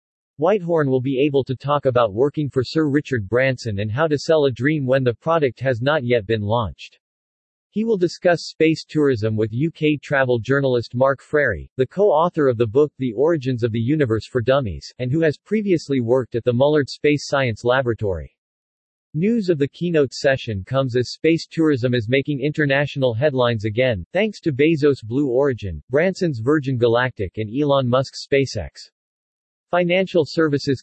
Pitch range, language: 120-155 Hz, English